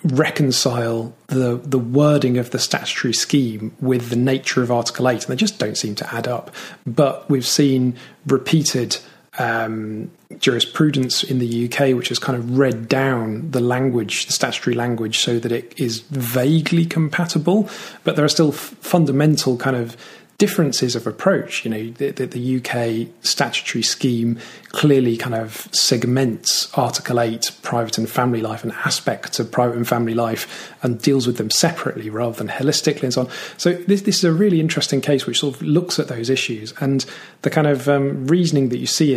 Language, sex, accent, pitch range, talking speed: English, male, British, 120-145 Hz, 180 wpm